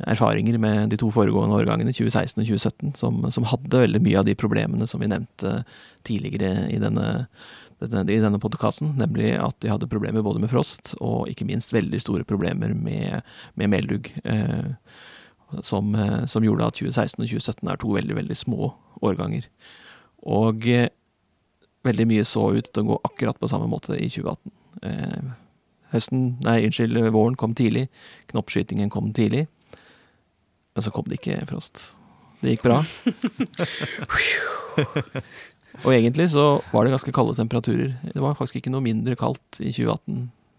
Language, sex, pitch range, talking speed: English, male, 105-125 Hz, 160 wpm